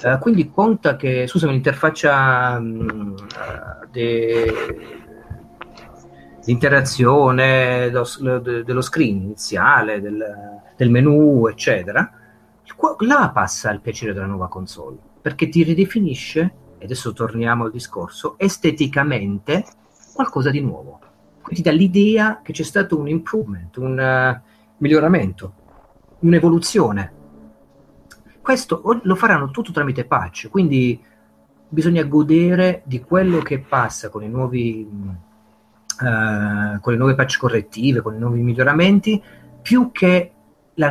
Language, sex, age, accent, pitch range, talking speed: Italian, male, 40-59, native, 110-155 Hz, 110 wpm